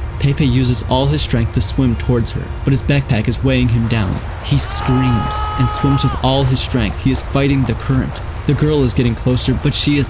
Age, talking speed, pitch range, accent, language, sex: 20-39, 220 wpm, 100-125 Hz, American, English, male